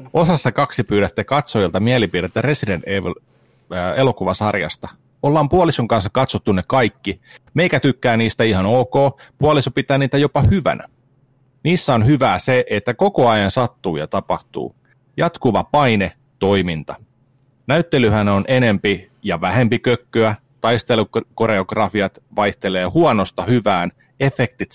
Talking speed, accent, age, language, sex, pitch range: 115 wpm, native, 40-59, Finnish, male, 105-135 Hz